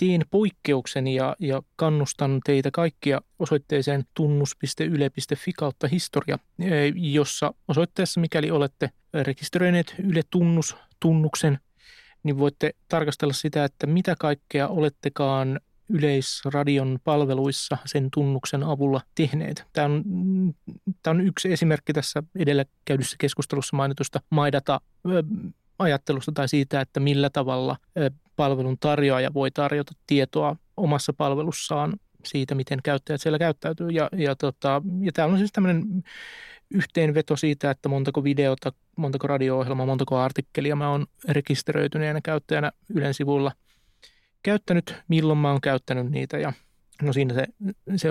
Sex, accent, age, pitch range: male, native, 30-49, 140-160 Hz